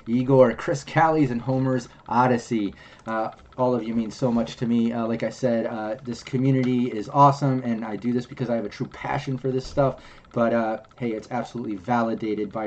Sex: male